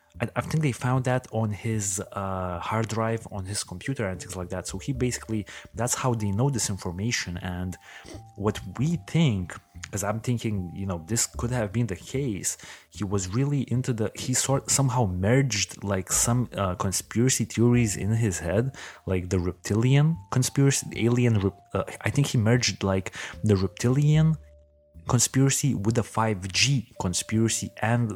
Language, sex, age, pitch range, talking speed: English, male, 30-49, 95-125 Hz, 165 wpm